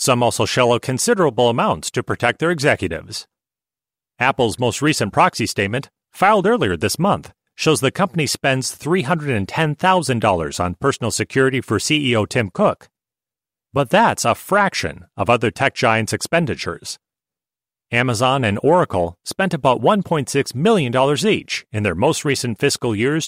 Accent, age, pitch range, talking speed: American, 40-59, 110-145 Hz, 140 wpm